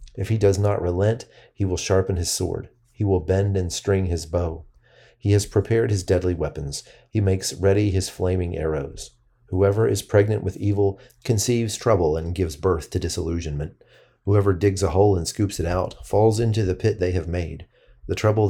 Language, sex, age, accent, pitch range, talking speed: English, male, 40-59, American, 90-105 Hz, 190 wpm